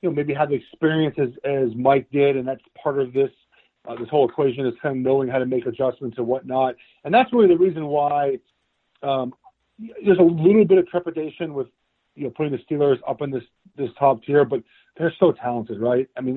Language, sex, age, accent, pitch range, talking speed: English, male, 40-59, American, 125-150 Hz, 225 wpm